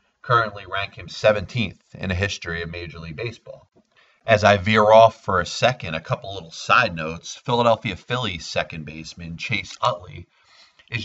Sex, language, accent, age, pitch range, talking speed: male, English, American, 30-49, 85-110 Hz, 165 wpm